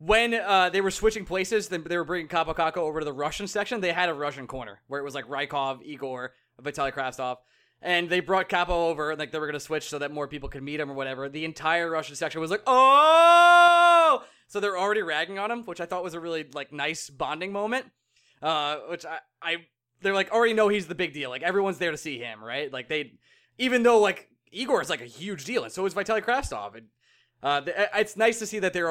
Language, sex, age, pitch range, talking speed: English, male, 20-39, 145-195 Hz, 240 wpm